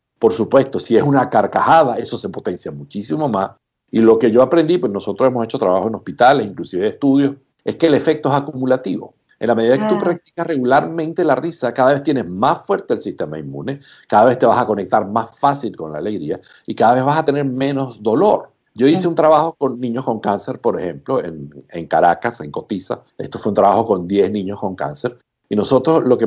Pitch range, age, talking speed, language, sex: 115-150 Hz, 60-79, 215 wpm, Spanish, male